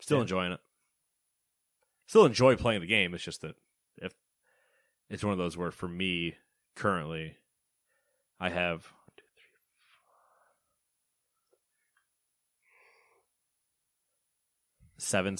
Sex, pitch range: male, 75-115 Hz